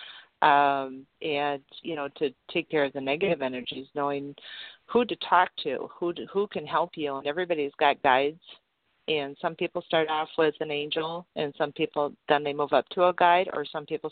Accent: American